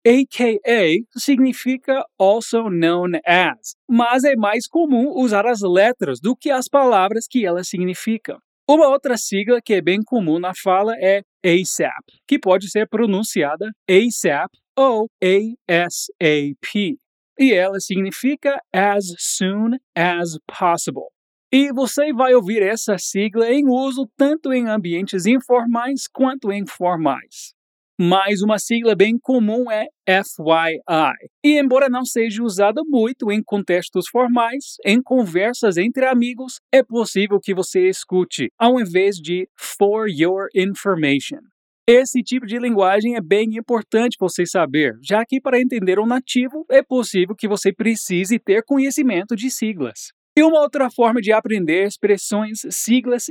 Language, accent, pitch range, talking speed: Portuguese, Brazilian, 195-255 Hz, 145 wpm